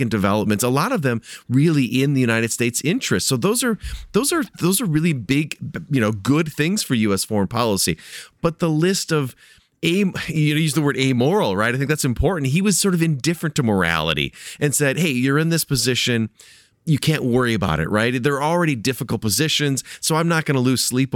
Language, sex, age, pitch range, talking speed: English, male, 30-49, 105-150 Hz, 215 wpm